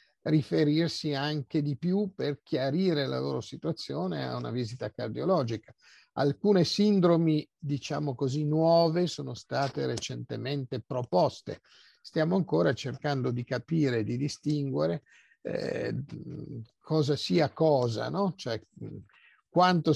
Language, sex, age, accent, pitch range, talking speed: Italian, male, 50-69, native, 120-155 Hz, 110 wpm